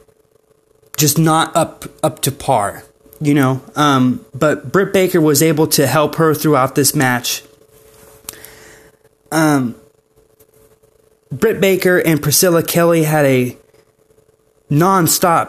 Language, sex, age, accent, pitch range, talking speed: English, male, 20-39, American, 145-165 Hz, 110 wpm